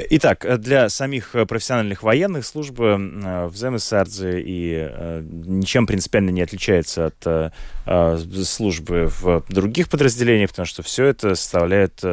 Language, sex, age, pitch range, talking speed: Russian, male, 20-39, 85-105 Hz, 115 wpm